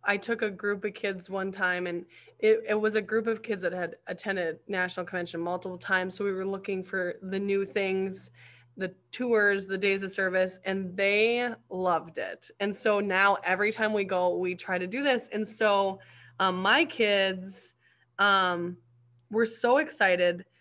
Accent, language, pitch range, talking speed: American, English, 180-215 Hz, 180 wpm